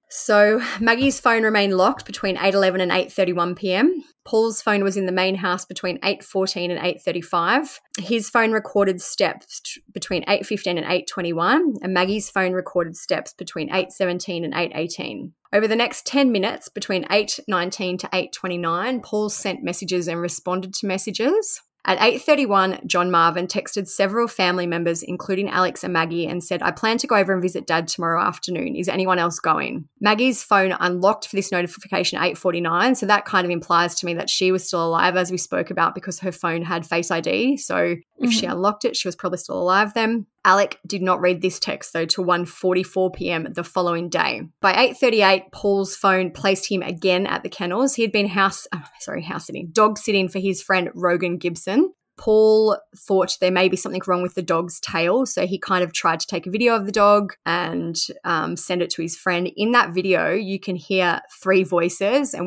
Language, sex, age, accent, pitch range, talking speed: English, female, 20-39, Australian, 180-205 Hz, 190 wpm